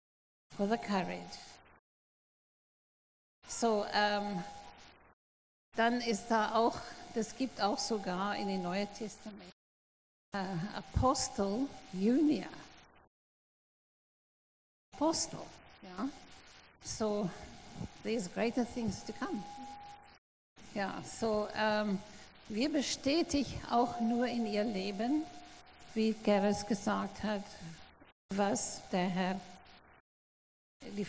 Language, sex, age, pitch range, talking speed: German, female, 50-69, 195-235 Hz, 95 wpm